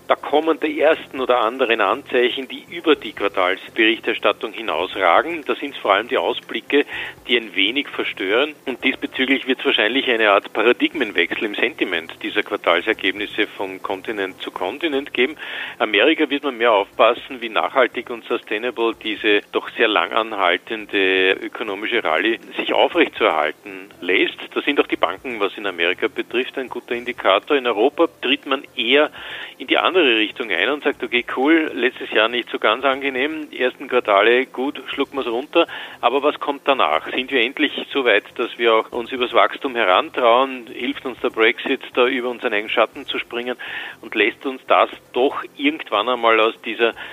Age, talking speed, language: 50-69, 170 wpm, German